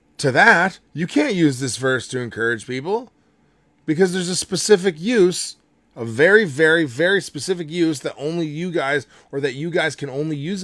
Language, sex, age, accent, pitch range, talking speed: English, male, 20-39, American, 105-145 Hz, 180 wpm